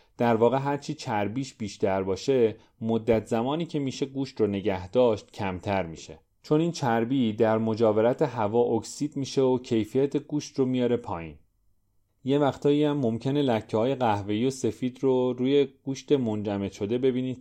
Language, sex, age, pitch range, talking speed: English, male, 30-49, 105-135 Hz, 150 wpm